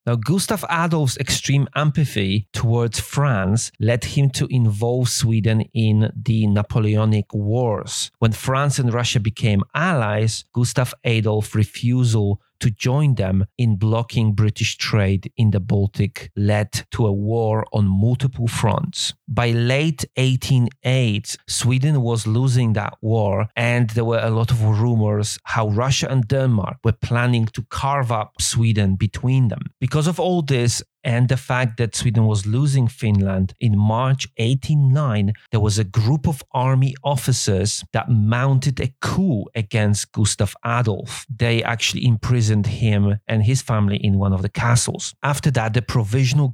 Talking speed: 150 wpm